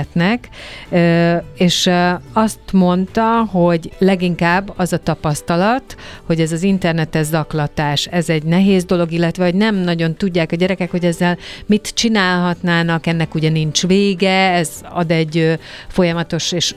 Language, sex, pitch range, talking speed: Hungarian, female, 155-180 Hz, 130 wpm